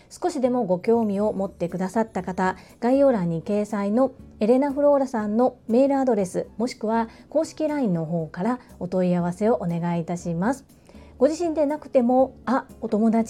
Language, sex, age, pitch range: Japanese, female, 40-59, 185-255 Hz